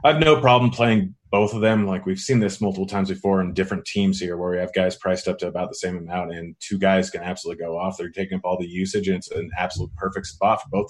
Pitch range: 90-100 Hz